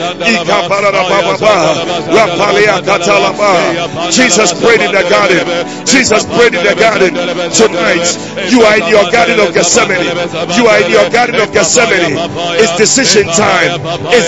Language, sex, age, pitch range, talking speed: English, male, 40-59, 175-235 Hz, 120 wpm